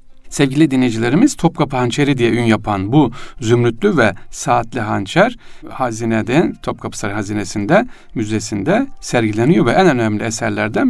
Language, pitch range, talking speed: Turkish, 110-150 Hz, 120 wpm